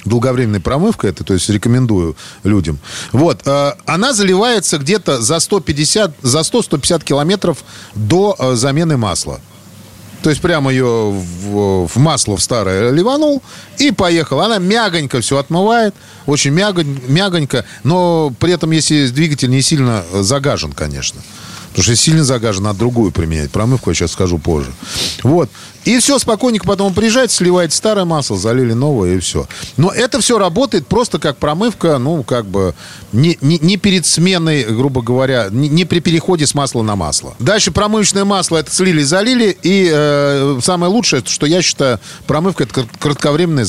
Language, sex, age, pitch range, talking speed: Russian, male, 40-59, 115-180 Hz, 155 wpm